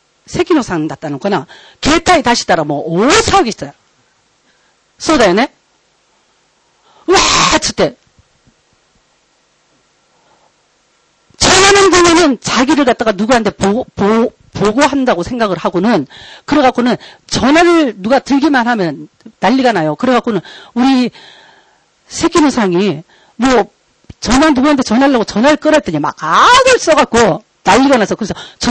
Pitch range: 200-285 Hz